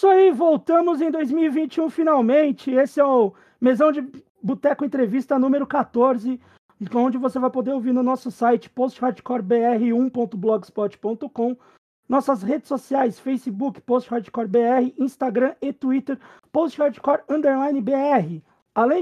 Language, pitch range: Portuguese, 225-275 Hz